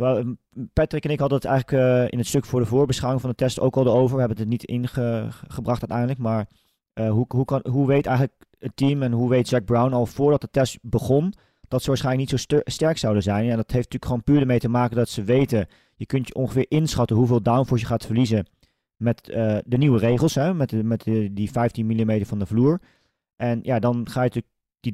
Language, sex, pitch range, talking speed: Dutch, male, 115-130 Hz, 245 wpm